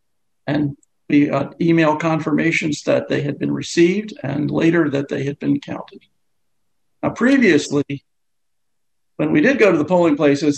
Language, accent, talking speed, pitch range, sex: English, American, 155 wpm, 145-165 Hz, male